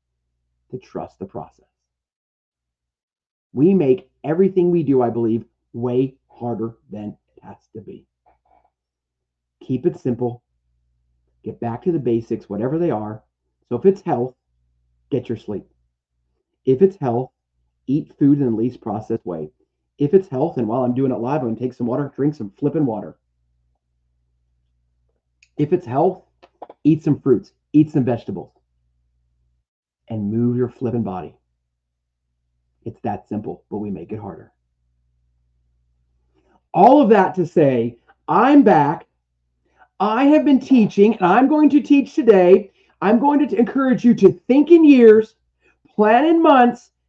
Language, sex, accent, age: English, male, American, 30-49